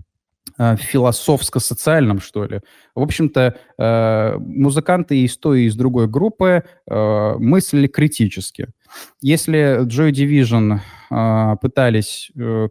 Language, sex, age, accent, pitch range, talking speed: Russian, male, 20-39, native, 110-130 Hz, 85 wpm